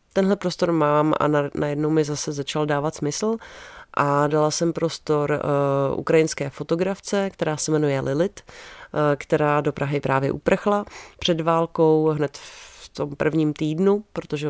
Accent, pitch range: native, 150-170 Hz